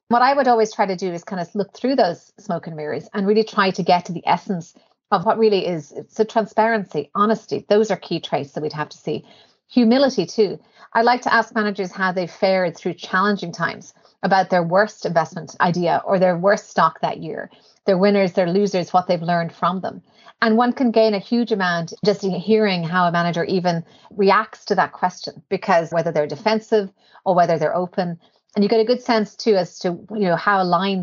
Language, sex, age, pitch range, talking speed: English, female, 40-59, 175-220 Hz, 215 wpm